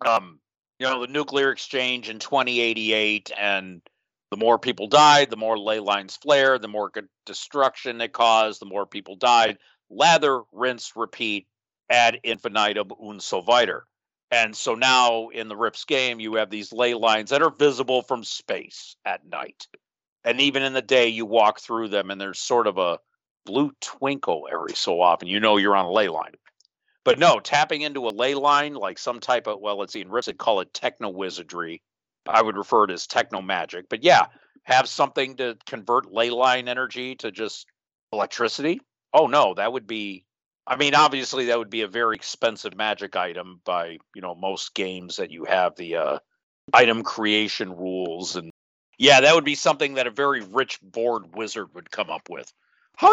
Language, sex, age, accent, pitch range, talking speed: English, male, 50-69, American, 105-130 Hz, 185 wpm